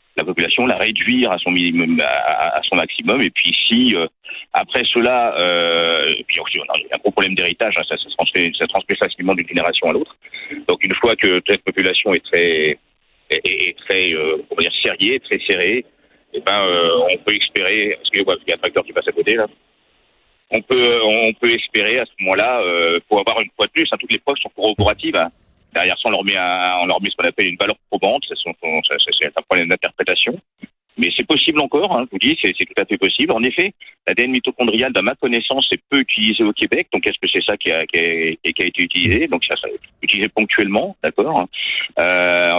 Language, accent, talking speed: French, French, 225 wpm